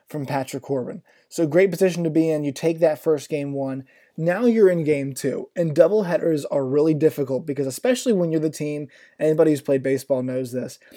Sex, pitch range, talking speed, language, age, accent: male, 140-170 Hz, 200 wpm, English, 20-39, American